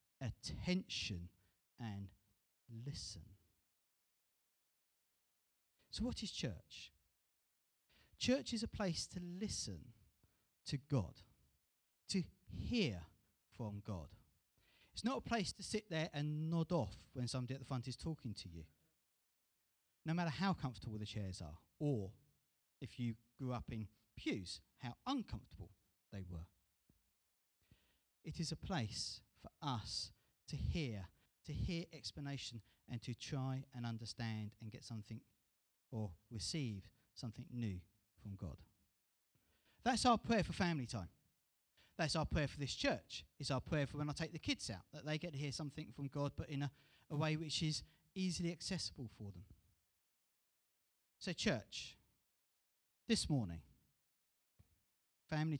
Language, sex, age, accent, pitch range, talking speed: English, male, 40-59, British, 100-150 Hz, 135 wpm